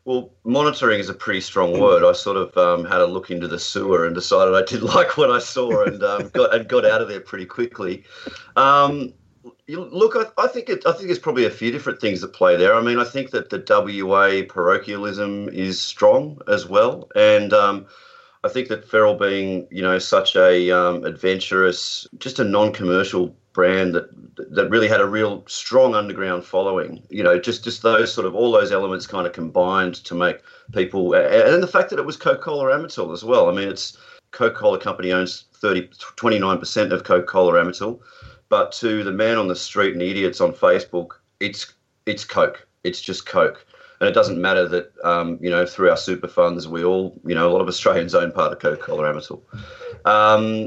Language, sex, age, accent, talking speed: English, male, 30-49, Australian, 205 wpm